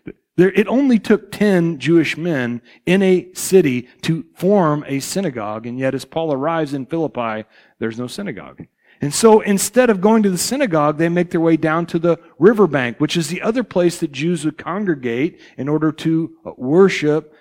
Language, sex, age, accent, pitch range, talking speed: English, male, 40-59, American, 145-200 Hz, 180 wpm